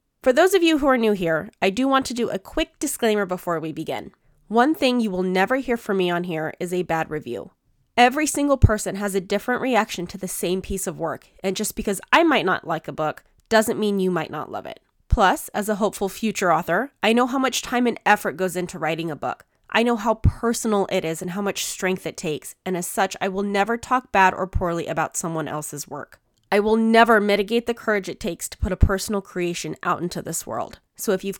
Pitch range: 175-225 Hz